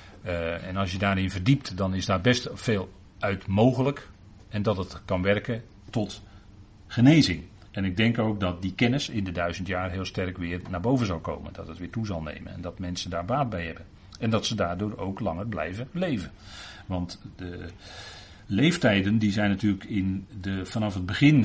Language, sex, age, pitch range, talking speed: Dutch, male, 40-59, 95-110 Hz, 195 wpm